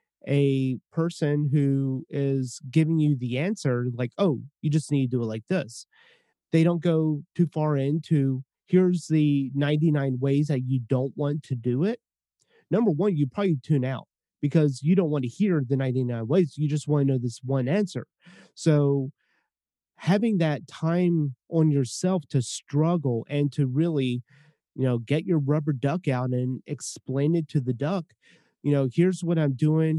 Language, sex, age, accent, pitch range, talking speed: English, male, 30-49, American, 135-165 Hz, 175 wpm